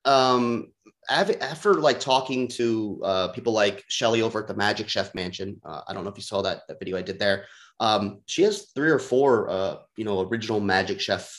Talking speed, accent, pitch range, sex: 210 wpm, American, 105-130 Hz, male